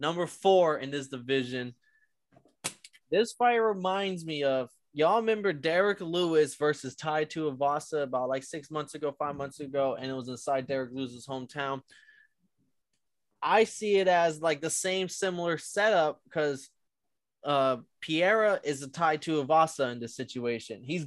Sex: male